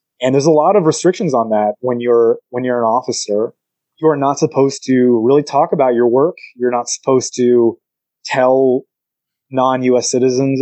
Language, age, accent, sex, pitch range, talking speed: English, 20-39, American, male, 115-140 Hz, 175 wpm